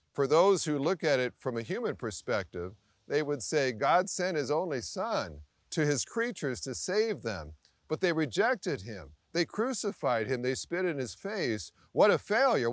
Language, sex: English, male